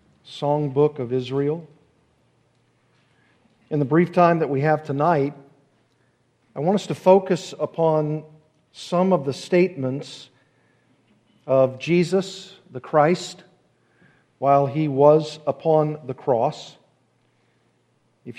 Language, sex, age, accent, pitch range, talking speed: English, male, 50-69, American, 130-165 Hz, 110 wpm